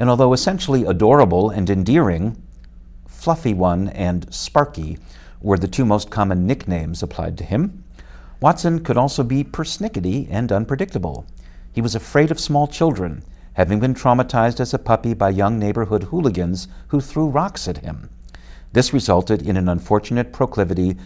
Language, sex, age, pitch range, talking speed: English, male, 60-79, 85-120 Hz, 150 wpm